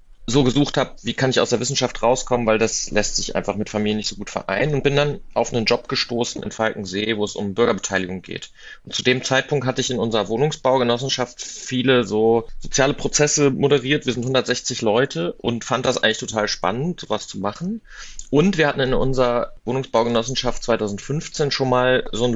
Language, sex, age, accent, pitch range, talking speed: German, male, 30-49, German, 110-130 Hz, 195 wpm